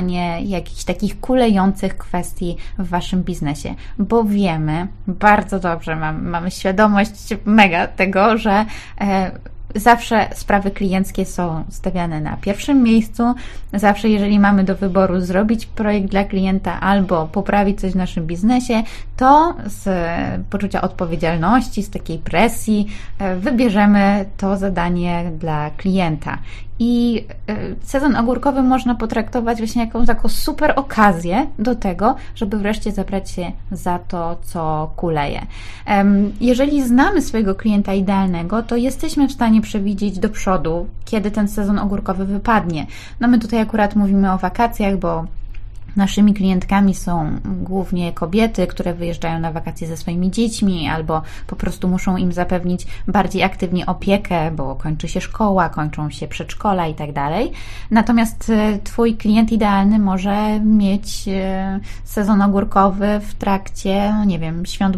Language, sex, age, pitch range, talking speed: Polish, female, 20-39, 175-215 Hz, 130 wpm